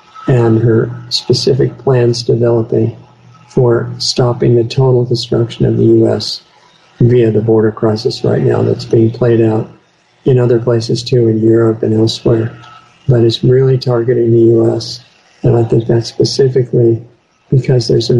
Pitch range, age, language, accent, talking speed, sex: 115-125 Hz, 50-69, English, American, 150 wpm, male